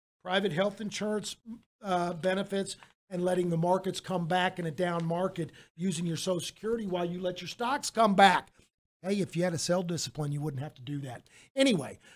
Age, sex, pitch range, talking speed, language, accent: 50-69, male, 170-205 Hz, 195 wpm, English, American